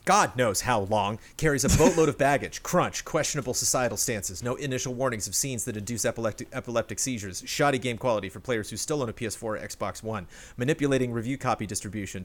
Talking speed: 190 wpm